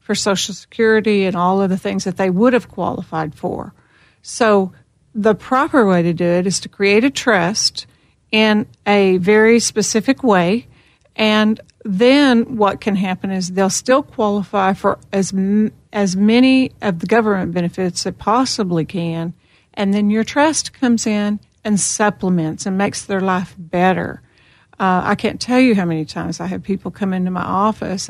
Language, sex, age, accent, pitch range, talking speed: English, female, 50-69, American, 180-215 Hz, 170 wpm